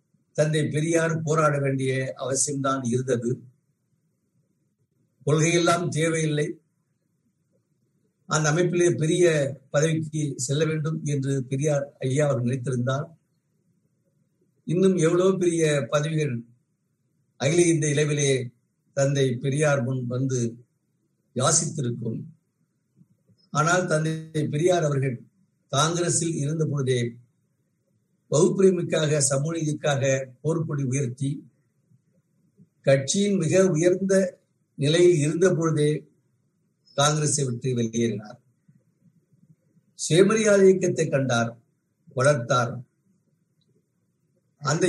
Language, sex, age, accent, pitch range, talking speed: Tamil, male, 60-79, native, 140-175 Hz, 70 wpm